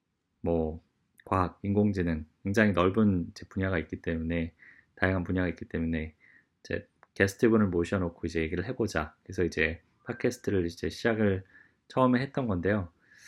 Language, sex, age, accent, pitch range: Korean, male, 20-39, native, 90-115 Hz